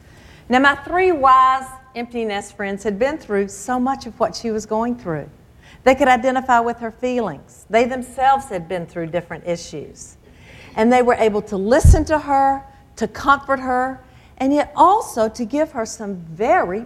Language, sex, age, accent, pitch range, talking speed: English, female, 50-69, American, 200-260 Hz, 180 wpm